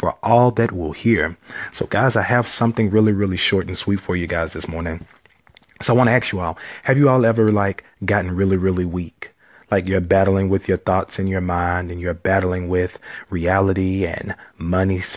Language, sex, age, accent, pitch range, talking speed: English, male, 30-49, American, 90-105 Hz, 205 wpm